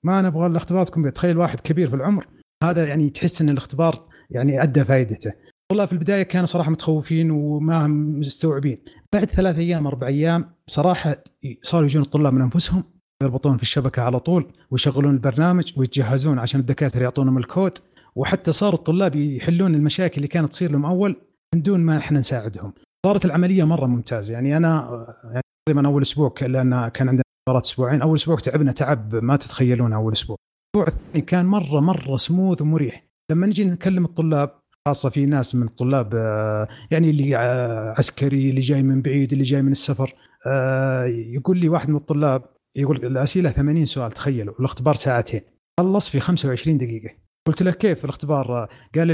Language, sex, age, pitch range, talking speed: Arabic, male, 30-49, 130-165 Hz, 160 wpm